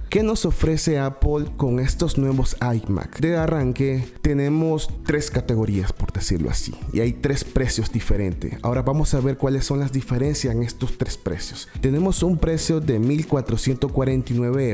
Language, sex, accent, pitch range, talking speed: Spanish, male, Venezuelan, 110-140 Hz, 155 wpm